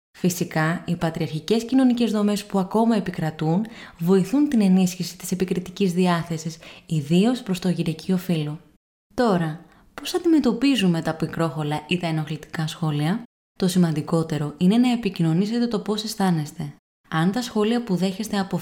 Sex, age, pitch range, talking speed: female, 20-39, 165-210 Hz, 135 wpm